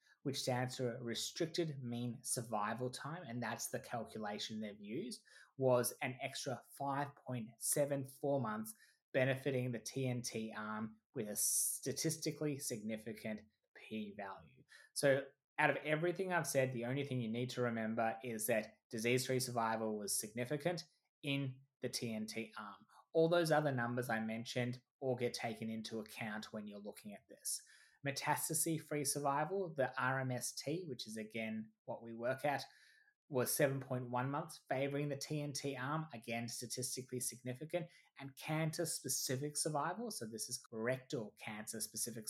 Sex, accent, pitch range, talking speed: male, Australian, 115-145 Hz, 140 wpm